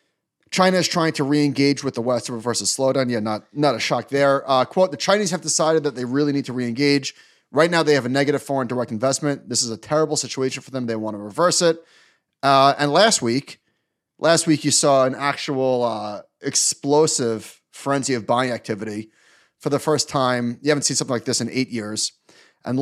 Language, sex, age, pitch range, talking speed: English, male, 30-49, 120-150 Hz, 215 wpm